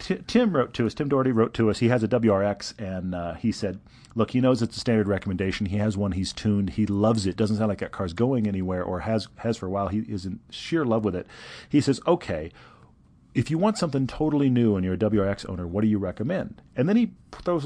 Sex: male